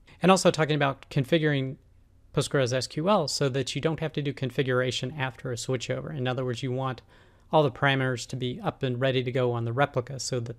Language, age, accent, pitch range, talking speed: English, 40-59, American, 125-150 Hz, 215 wpm